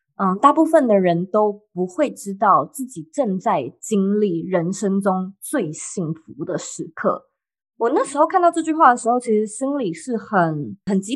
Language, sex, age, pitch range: Chinese, female, 20-39, 190-275 Hz